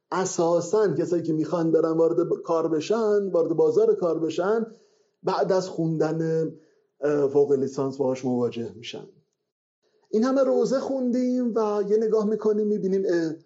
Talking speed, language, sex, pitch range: 130 wpm, Persian, male, 155-215 Hz